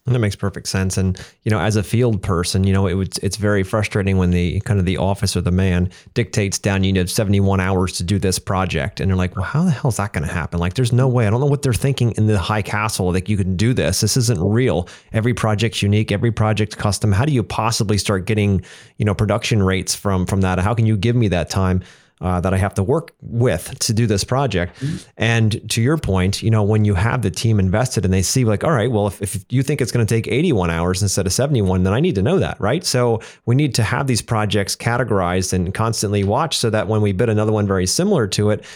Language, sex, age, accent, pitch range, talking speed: English, male, 30-49, American, 95-120 Hz, 265 wpm